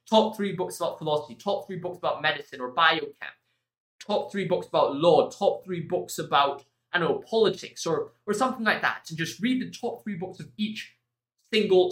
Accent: British